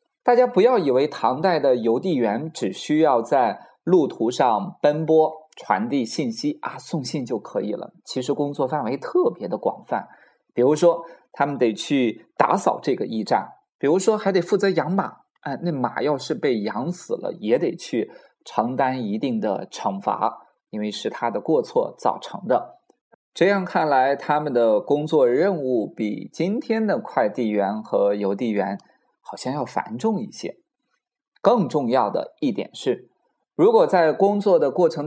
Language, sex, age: Chinese, male, 20-39